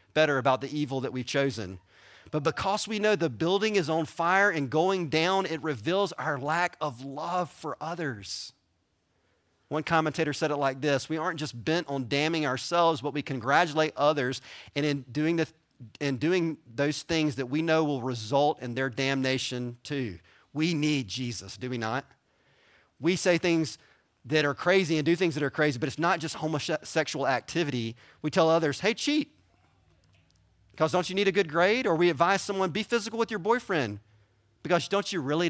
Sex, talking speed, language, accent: male, 185 wpm, English, American